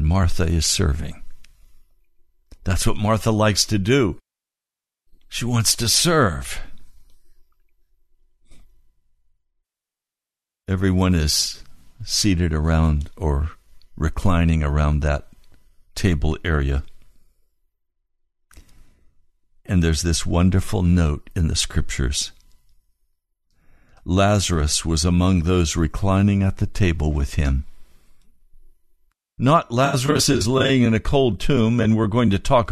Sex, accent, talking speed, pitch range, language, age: male, American, 100 wpm, 75-105 Hz, English, 60-79